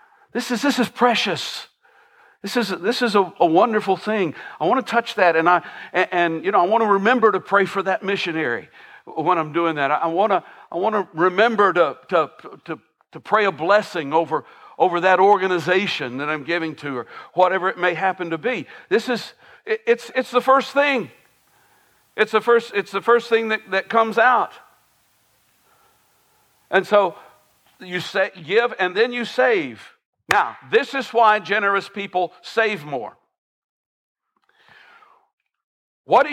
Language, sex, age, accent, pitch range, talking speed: English, male, 60-79, American, 180-235 Hz, 175 wpm